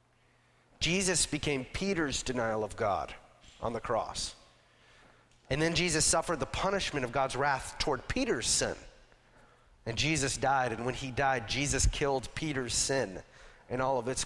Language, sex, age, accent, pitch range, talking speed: English, male, 40-59, American, 125-165 Hz, 150 wpm